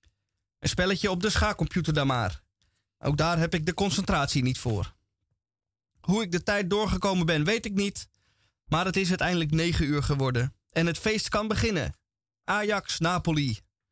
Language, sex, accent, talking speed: Dutch, male, Dutch, 160 wpm